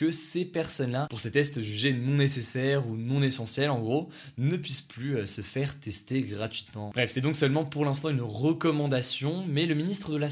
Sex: male